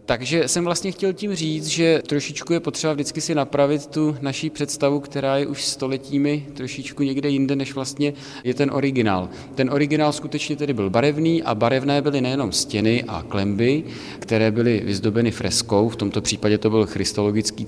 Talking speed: 175 wpm